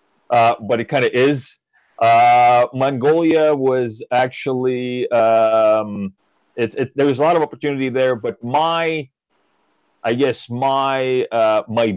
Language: English